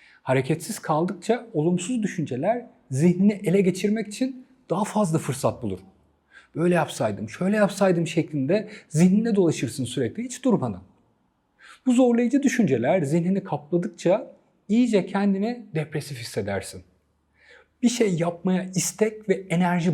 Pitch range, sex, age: 145-225 Hz, male, 40-59